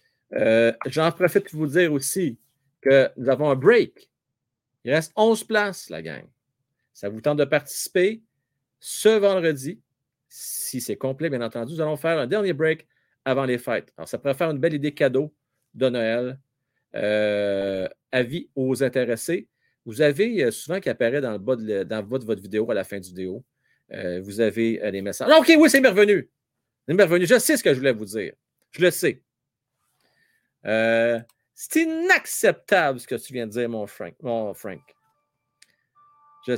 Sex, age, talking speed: male, 40-59, 185 wpm